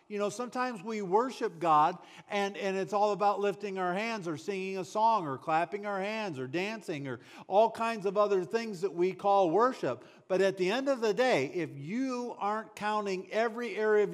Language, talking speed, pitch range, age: English, 205 wpm, 180-235 Hz, 50-69